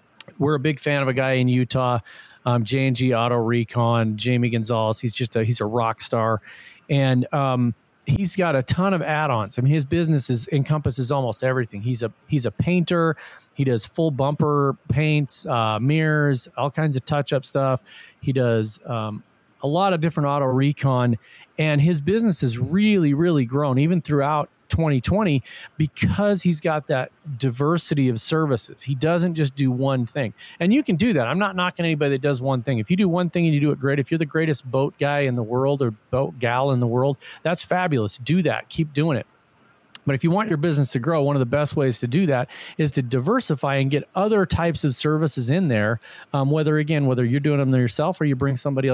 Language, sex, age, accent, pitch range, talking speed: English, male, 40-59, American, 125-155 Hz, 210 wpm